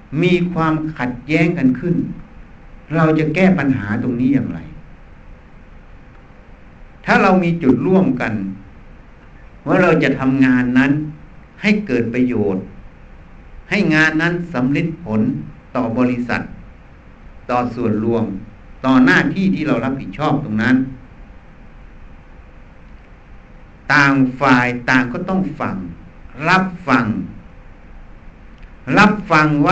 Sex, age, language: male, 60-79, Thai